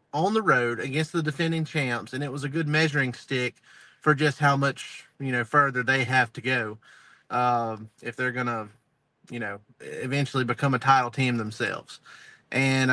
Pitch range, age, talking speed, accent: 125-150 Hz, 30-49, 175 wpm, American